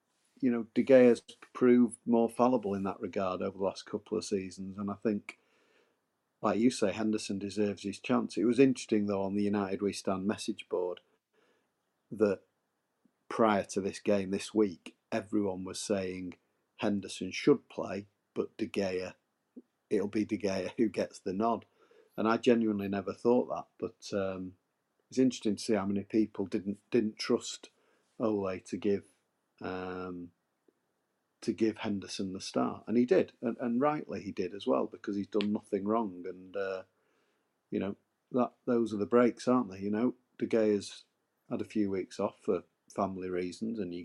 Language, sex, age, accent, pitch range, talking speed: English, male, 40-59, British, 100-115 Hz, 175 wpm